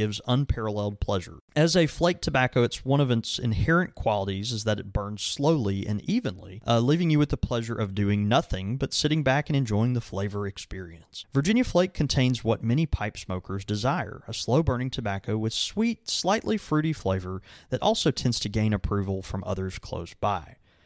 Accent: American